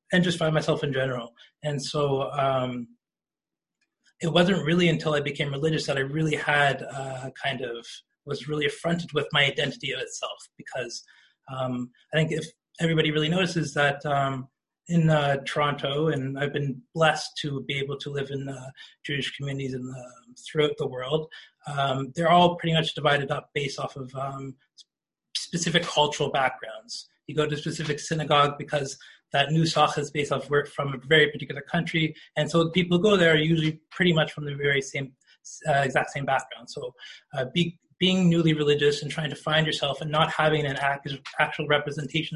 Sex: male